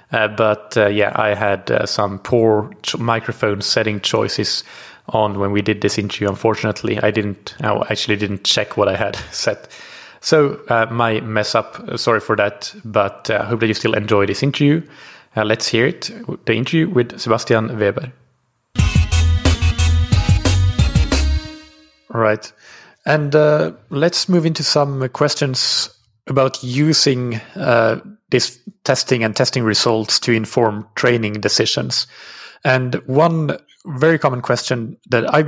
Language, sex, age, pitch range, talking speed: English, male, 30-49, 105-135 Hz, 135 wpm